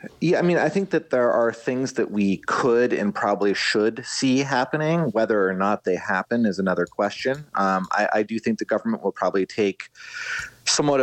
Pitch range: 95-115 Hz